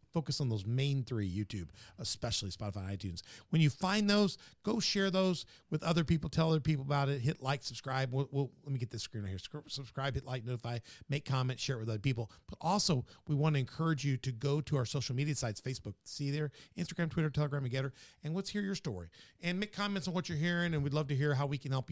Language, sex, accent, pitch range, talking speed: English, male, American, 115-150 Hz, 245 wpm